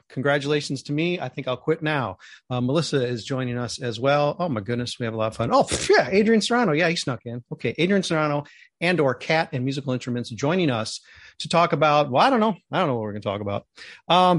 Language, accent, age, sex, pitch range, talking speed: English, American, 40-59, male, 125-175 Hz, 245 wpm